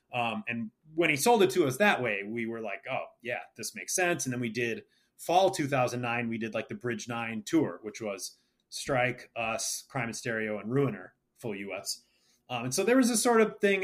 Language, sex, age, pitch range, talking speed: English, male, 30-49, 120-160 Hz, 225 wpm